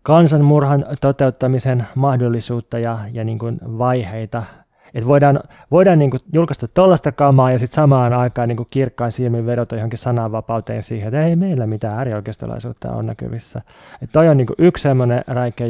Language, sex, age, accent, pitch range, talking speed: Finnish, male, 20-39, native, 115-140 Hz, 170 wpm